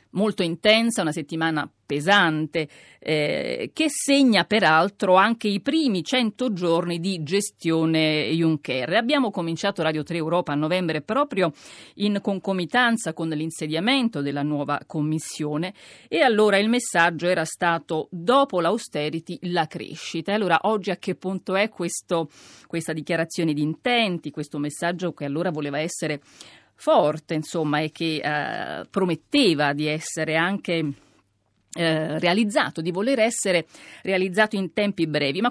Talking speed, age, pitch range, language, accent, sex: 130 wpm, 40-59, 155-200 Hz, Italian, native, female